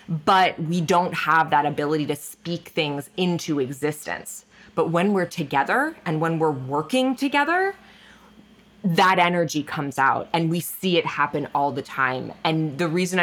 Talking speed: 160 wpm